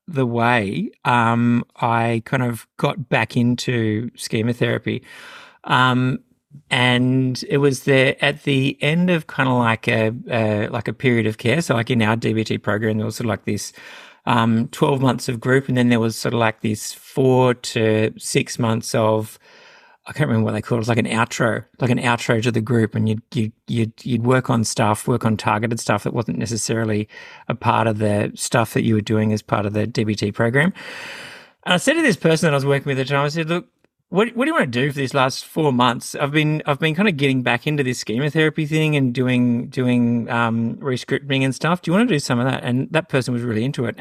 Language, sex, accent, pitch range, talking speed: English, male, Australian, 115-140 Hz, 235 wpm